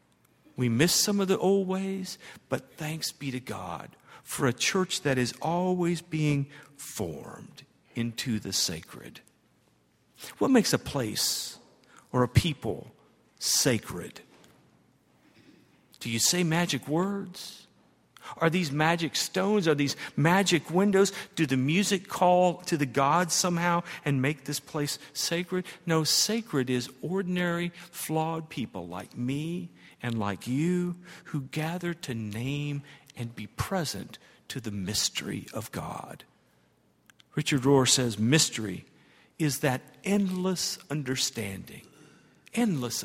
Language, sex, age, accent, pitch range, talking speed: English, male, 50-69, American, 135-180 Hz, 125 wpm